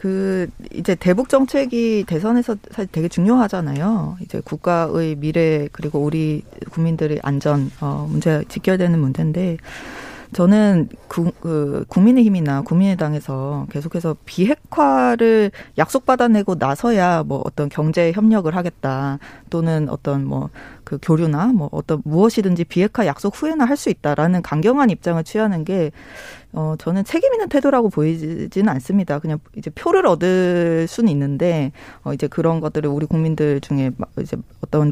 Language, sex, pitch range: Korean, female, 150-210 Hz